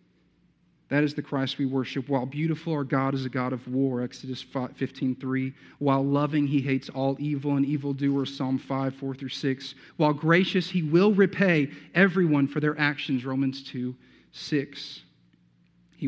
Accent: American